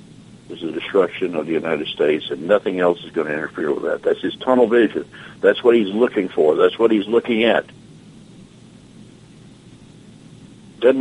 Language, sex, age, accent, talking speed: English, male, 60-79, American, 175 wpm